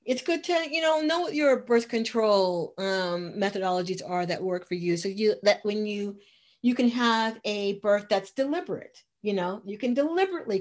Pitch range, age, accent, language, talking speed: 180-250 Hz, 40-59, American, English, 190 wpm